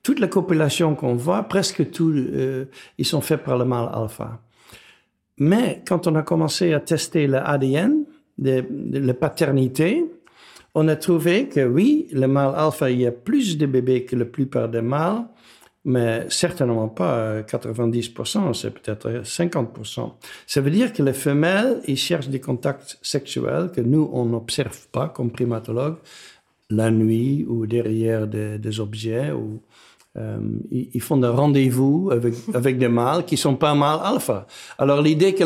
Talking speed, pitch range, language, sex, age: 160 wpm, 125-165 Hz, French, male, 60-79